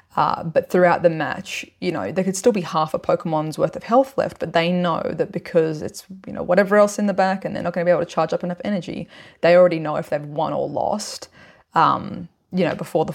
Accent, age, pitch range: Australian, 20-39, 165-200 Hz